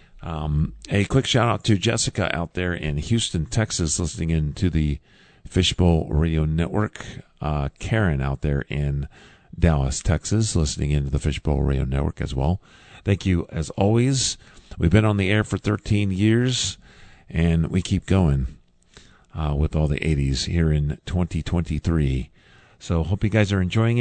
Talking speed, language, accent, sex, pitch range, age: 155 wpm, English, American, male, 80-115 Hz, 50-69